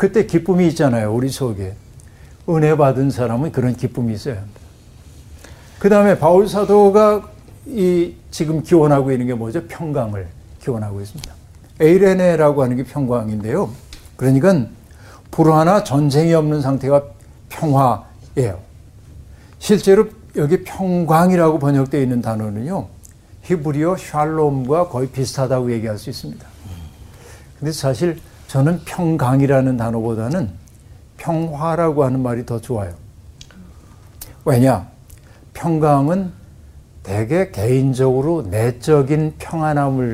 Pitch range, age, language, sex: 110-160 Hz, 60-79, Korean, male